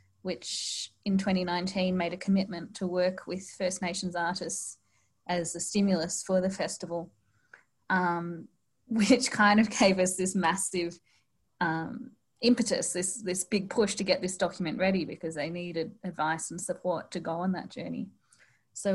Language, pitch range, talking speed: English, 175-200 Hz, 155 wpm